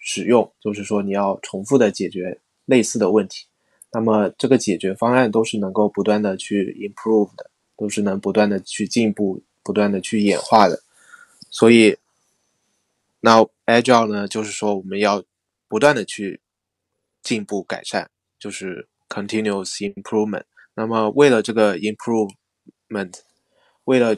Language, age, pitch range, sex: Chinese, 20-39, 100-110 Hz, male